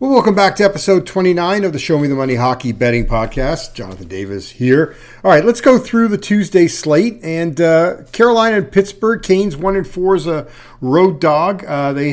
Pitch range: 120-170 Hz